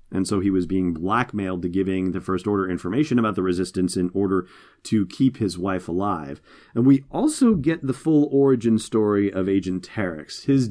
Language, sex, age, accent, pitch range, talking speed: English, male, 30-49, American, 95-120 Hz, 190 wpm